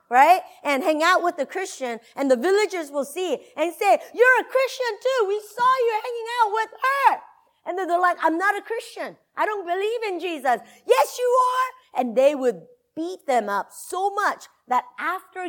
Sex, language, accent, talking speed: female, English, American, 200 wpm